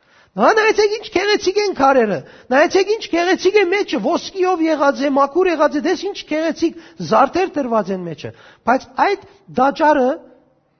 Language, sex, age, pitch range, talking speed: English, male, 40-59, 210-285 Hz, 155 wpm